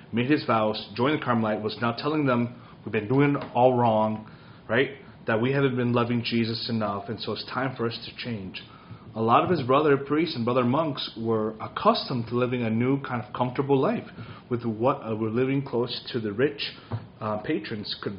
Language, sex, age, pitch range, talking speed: English, male, 30-49, 110-130 Hz, 205 wpm